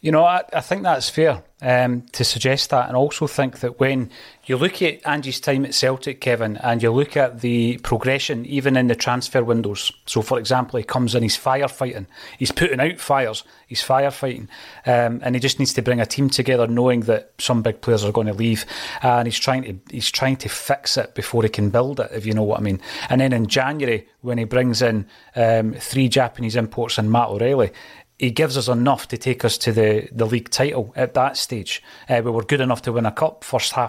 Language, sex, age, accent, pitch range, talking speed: English, male, 30-49, British, 115-130 Hz, 225 wpm